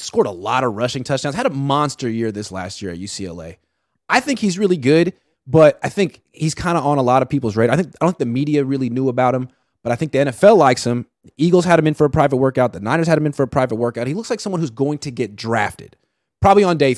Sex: male